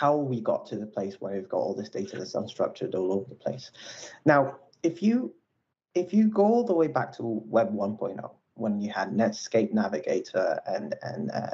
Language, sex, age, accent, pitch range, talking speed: English, male, 30-49, British, 110-140 Hz, 190 wpm